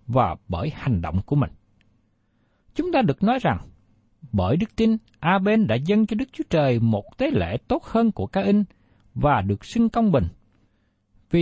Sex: male